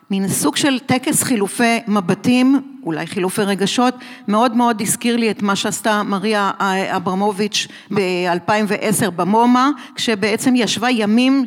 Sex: female